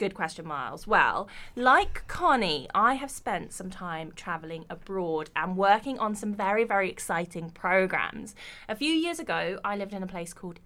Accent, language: British, English